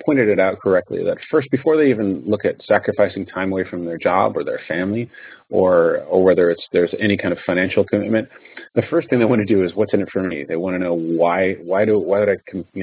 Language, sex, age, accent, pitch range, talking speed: English, male, 30-49, American, 95-125 Hz, 255 wpm